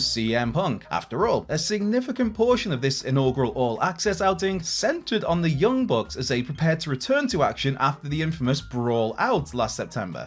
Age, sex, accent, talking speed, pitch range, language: 20-39, male, British, 185 wpm, 125-200 Hz, English